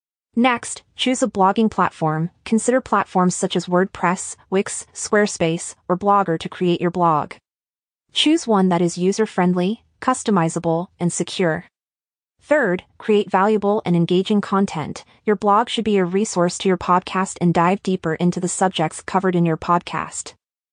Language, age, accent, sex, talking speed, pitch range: English, 30-49, American, female, 150 wpm, 175-210 Hz